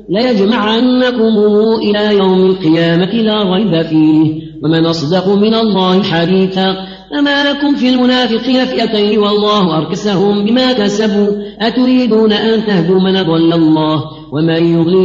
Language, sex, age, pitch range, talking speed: Arabic, female, 40-59, 185-220 Hz, 115 wpm